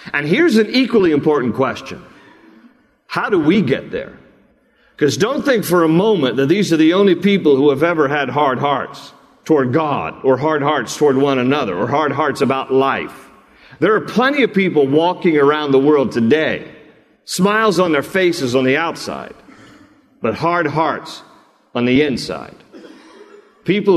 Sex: male